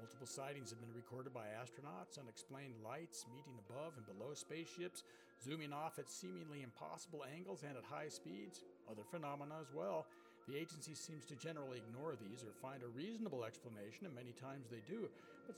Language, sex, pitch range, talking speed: English, male, 120-155 Hz, 175 wpm